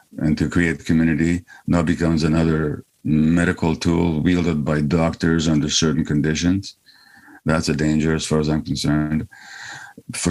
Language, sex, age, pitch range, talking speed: English, male, 50-69, 75-90 Hz, 140 wpm